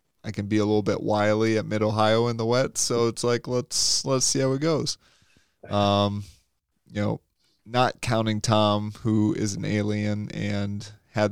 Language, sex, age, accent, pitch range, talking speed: English, male, 20-39, American, 100-110 Hz, 175 wpm